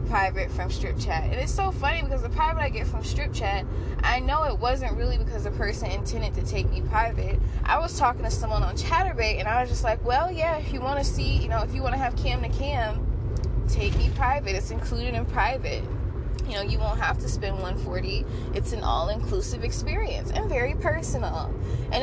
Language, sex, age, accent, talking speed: English, female, 10-29, American, 220 wpm